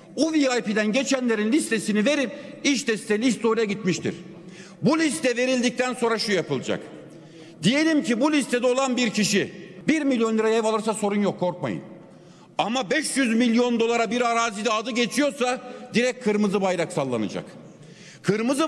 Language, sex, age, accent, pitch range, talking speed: Turkish, male, 50-69, native, 200-250 Hz, 140 wpm